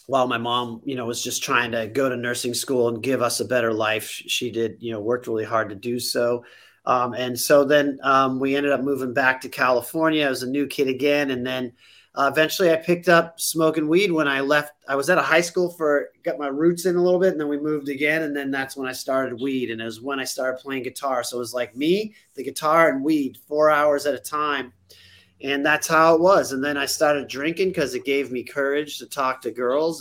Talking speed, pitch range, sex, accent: 250 wpm, 125-150 Hz, male, American